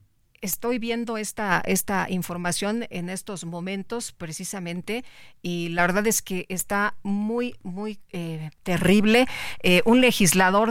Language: Spanish